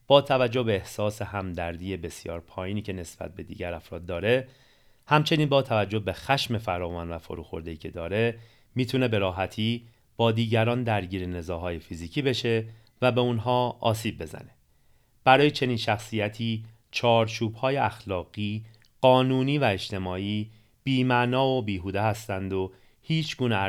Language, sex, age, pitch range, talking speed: Persian, male, 30-49, 95-125 Hz, 130 wpm